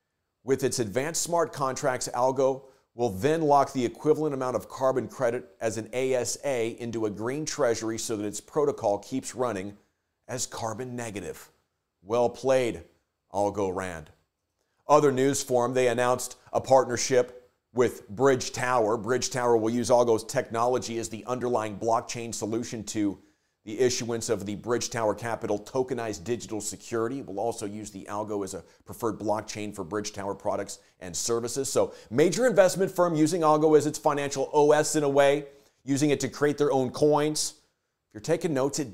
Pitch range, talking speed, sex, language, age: 110-140 Hz, 165 wpm, male, English, 40-59